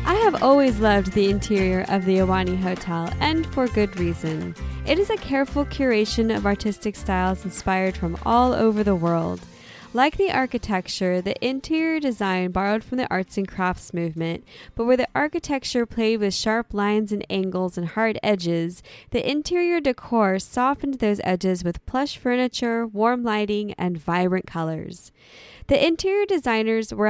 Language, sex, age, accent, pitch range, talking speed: English, female, 10-29, American, 185-250 Hz, 160 wpm